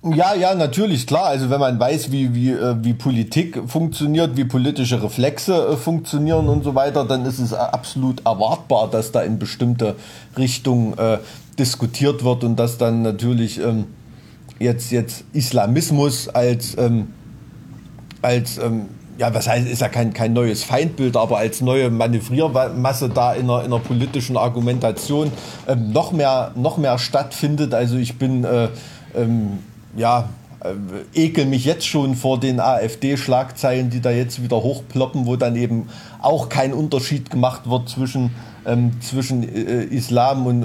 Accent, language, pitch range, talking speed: German, German, 115-135 Hz, 155 wpm